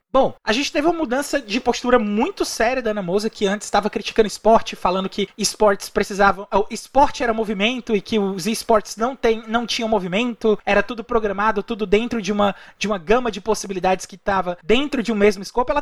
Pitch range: 200-240 Hz